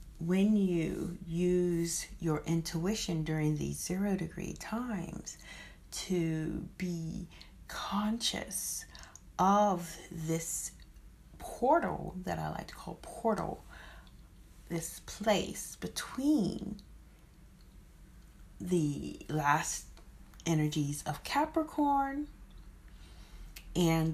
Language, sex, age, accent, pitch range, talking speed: English, female, 40-59, American, 150-190 Hz, 75 wpm